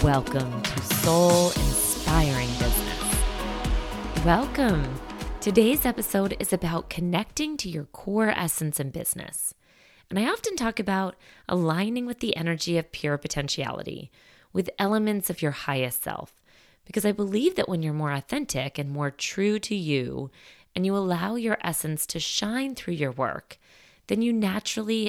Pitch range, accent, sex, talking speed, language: 145-205 Hz, American, female, 145 wpm, English